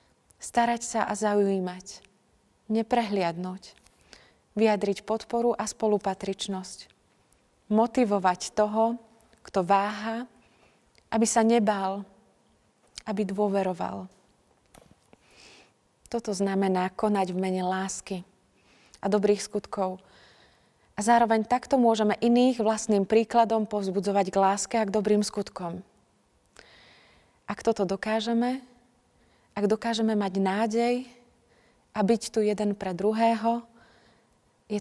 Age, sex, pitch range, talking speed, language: 30-49, female, 195-225 Hz, 95 wpm, Slovak